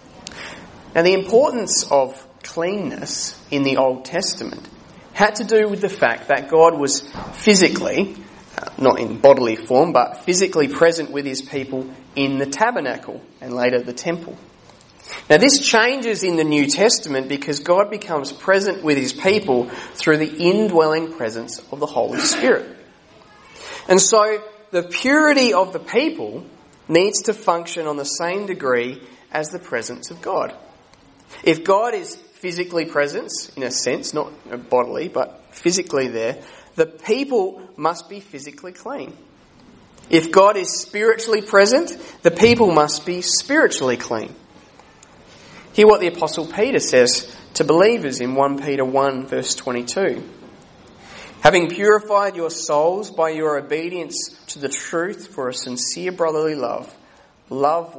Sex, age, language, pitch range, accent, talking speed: male, 30-49, English, 140-195 Hz, Australian, 140 wpm